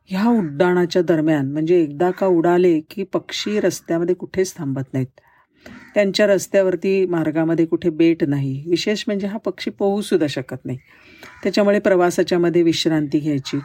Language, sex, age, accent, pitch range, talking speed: Marathi, female, 50-69, native, 155-195 Hz, 135 wpm